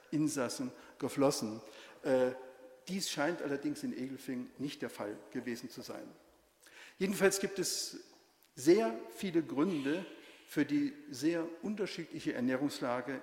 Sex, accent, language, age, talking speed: male, German, German, 50-69, 110 wpm